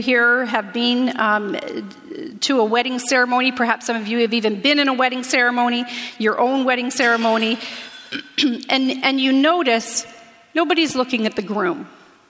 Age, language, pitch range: 40-59, English, 225-285 Hz